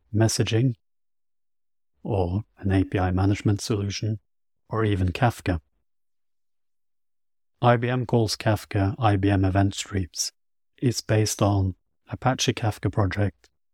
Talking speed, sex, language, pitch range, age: 90 wpm, male, English, 95-110 Hz, 30-49